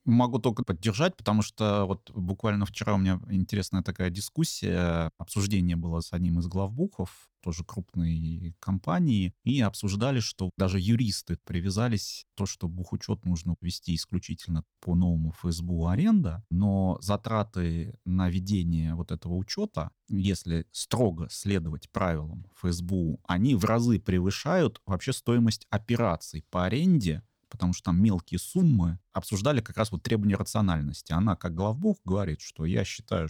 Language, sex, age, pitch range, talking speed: Russian, male, 30-49, 90-110 Hz, 140 wpm